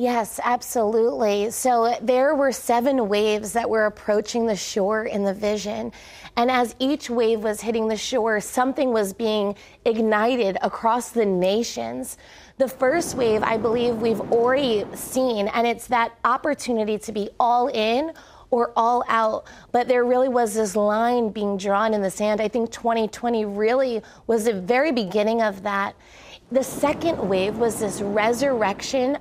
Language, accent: English, American